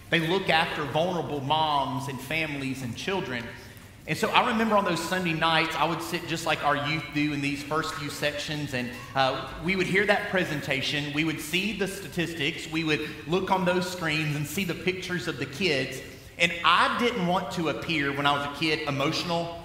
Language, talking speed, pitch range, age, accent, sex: English, 205 wpm, 135-170 Hz, 30-49, American, male